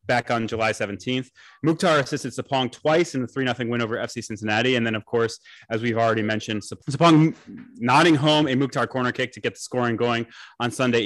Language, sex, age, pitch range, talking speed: English, male, 20-39, 115-150 Hz, 200 wpm